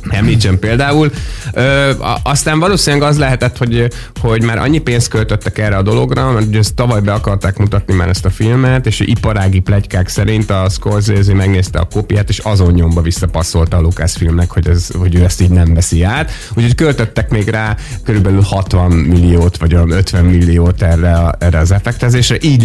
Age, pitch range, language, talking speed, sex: 30-49, 90-115 Hz, Hungarian, 180 wpm, male